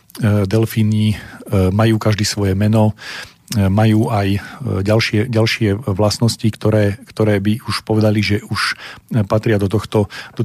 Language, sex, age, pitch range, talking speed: Slovak, male, 40-59, 105-120 Hz, 120 wpm